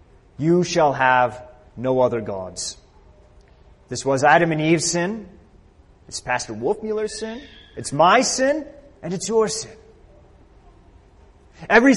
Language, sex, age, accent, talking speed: English, male, 30-49, American, 120 wpm